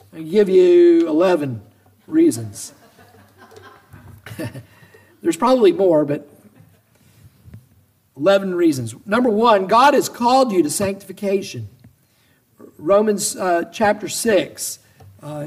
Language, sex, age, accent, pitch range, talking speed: English, male, 50-69, American, 125-205 Hz, 95 wpm